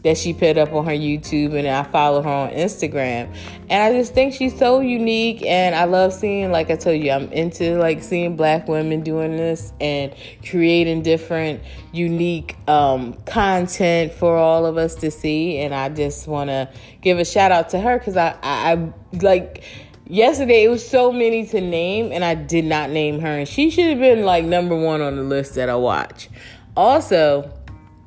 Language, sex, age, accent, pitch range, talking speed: English, female, 30-49, American, 145-195 Hz, 195 wpm